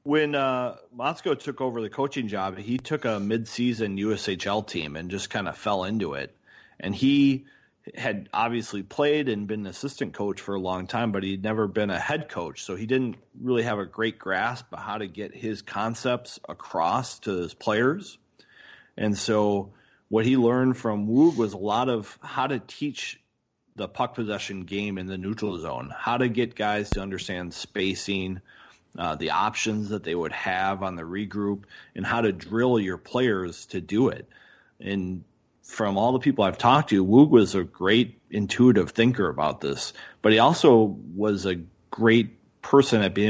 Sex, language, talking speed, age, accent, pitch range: male, English, 185 wpm, 30-49, American, 95-115 Hz